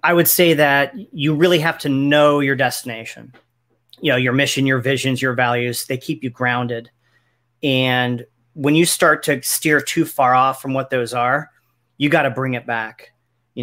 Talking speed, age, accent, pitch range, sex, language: 190 wpm, 40-59, American, 125-150 Hz, male, English